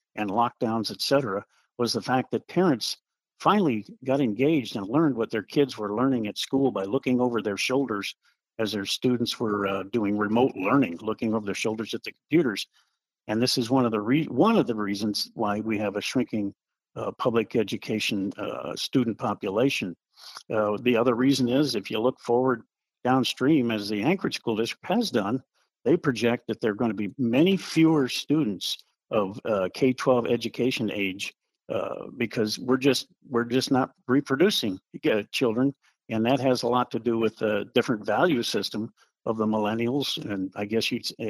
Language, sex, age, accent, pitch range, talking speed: English, male, 50-69, American, 110-135 Hz, 185 wpm